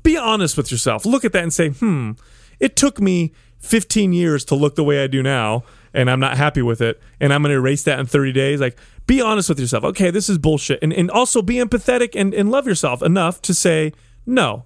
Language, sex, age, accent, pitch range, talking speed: English, male, 30-49, American, 130-180 Hz, 240 wpm